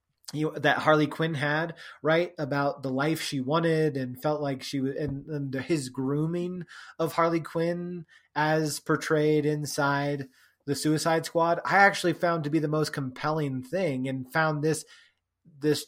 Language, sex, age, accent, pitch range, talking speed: English, male, 20-39, American, 135-165 Hz, 155 wpm